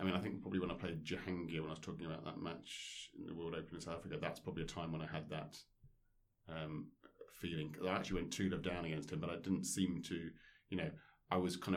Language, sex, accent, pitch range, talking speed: English, male, British, 85-95 Hz, 260 wpm